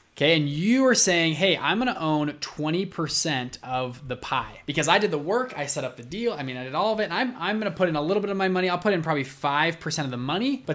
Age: 20-39